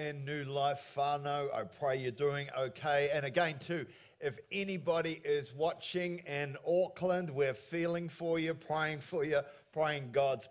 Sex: male